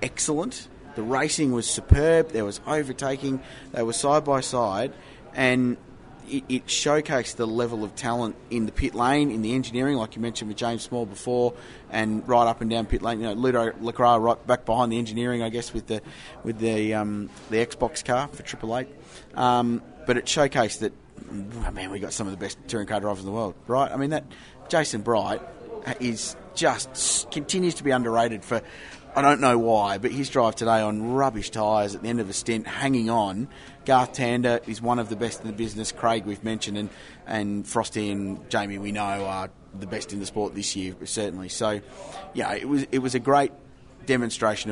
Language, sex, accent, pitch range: English, male, Australian, 105-130 Hz